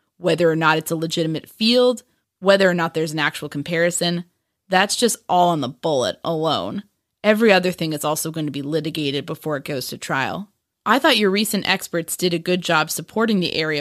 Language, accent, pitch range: English, American, 155-195 Hz